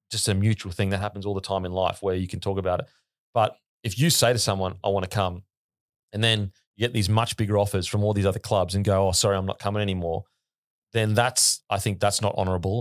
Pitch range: 95-110 Hz